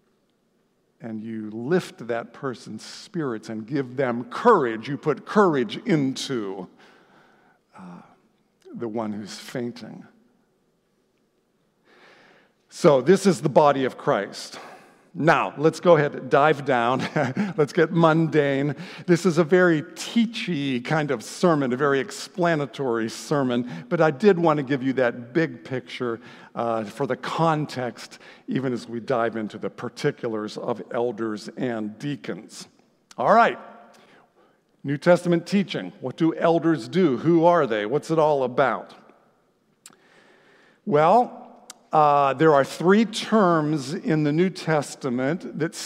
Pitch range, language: 125-170 Hz, English